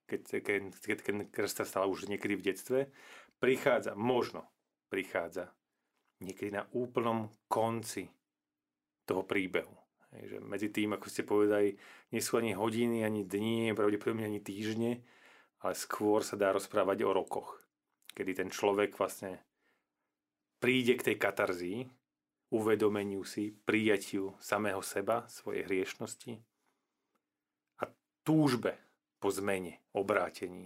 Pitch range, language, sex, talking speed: 100-120 Hz, Slovak, male, 120 wpm